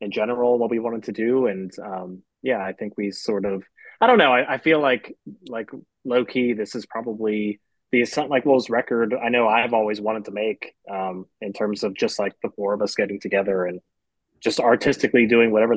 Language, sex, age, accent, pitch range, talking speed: English, male, 20-39, American, 105-120 Hz, 215 wpm